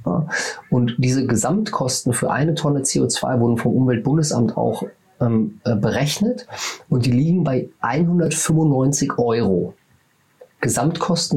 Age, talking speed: 30-49, 100 wpm